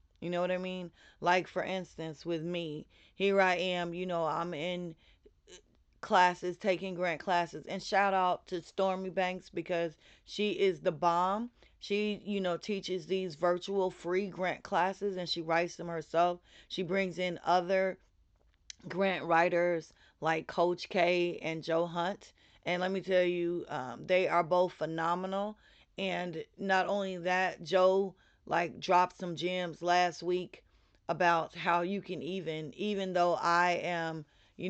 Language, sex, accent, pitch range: English, female, American, 165-185 Hz